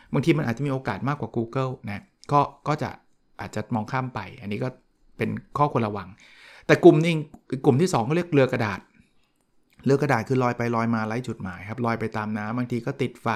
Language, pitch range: Thai, 115-145 Hz